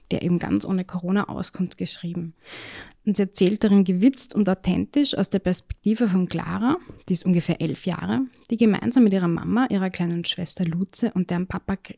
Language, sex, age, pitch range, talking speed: German, female, 20-39, 180-220 Hz, 180 wpm